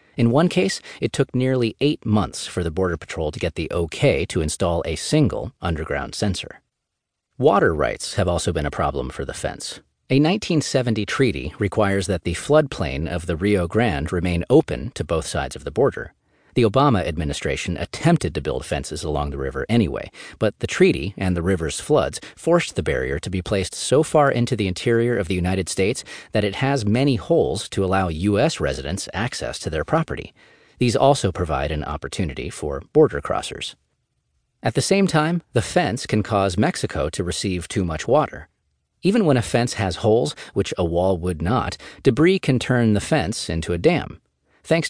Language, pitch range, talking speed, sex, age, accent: English, 85-125 Hz, 185 wpm, male, 40-59, American